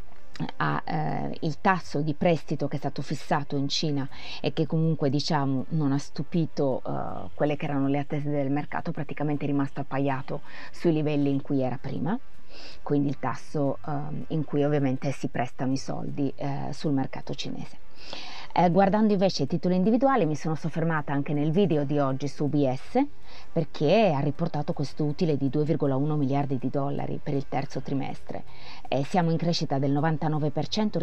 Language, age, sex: Italian, 30-49, female